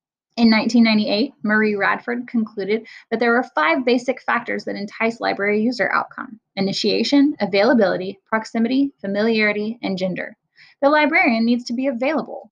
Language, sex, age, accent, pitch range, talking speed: English, female, 10-29, American, 205-265 Hz, 135 wpm